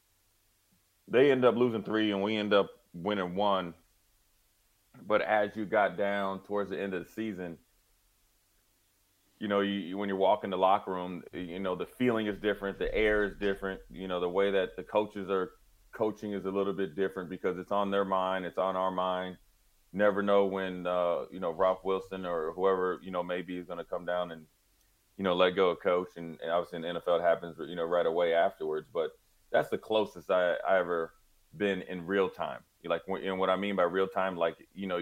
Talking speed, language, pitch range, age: 210 wpm, English, 90-100 Hz, 30-49